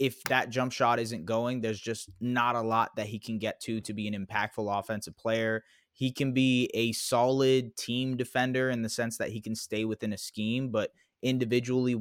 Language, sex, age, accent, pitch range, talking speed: English, male, 20-39, American, 110-125 Hz, 205 wpm